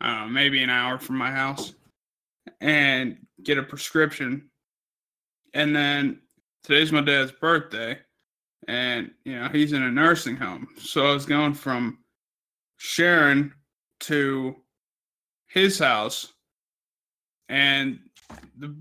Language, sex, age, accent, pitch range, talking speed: English, male, 20-39, American, 140-175 Hz, 115 wpm